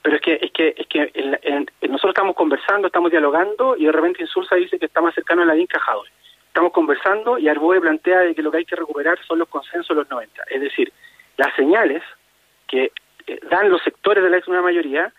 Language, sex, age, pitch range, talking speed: Spanish, male, 30-49, 155-230 Hz, 230 wpm